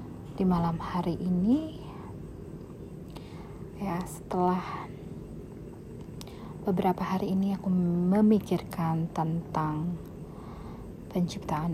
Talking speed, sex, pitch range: 65 wpm, female, 170-195 Hz